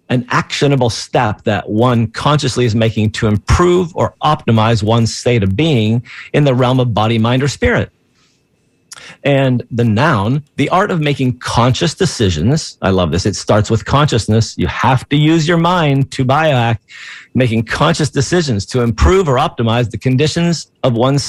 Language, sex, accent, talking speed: English, male, American, 165 wpm